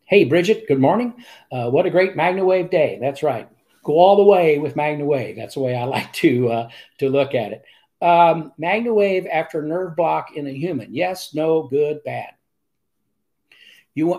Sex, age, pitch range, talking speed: male, 60-79, 130-165 Hz, 180 wpm